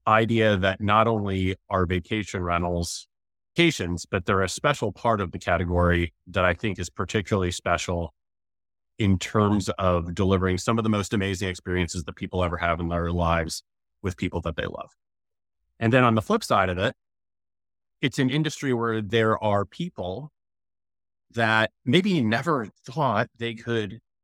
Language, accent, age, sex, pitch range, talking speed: English, American, 30-49, male, 90-110 Hz, 160 wpm